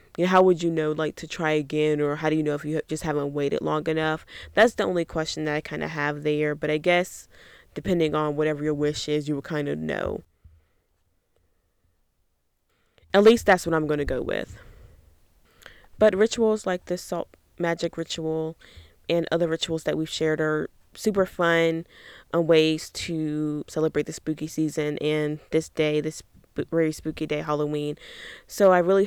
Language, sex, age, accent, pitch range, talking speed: English, female, 20-39, American, 150-165 Hz, 185 wpm